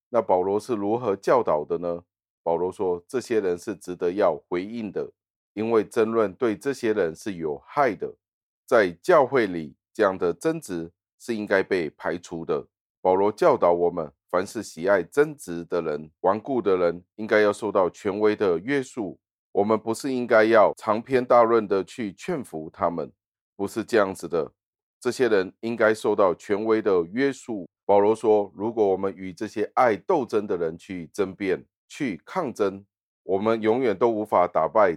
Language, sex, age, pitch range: Chinese, male, 30-49, 95-120 Hz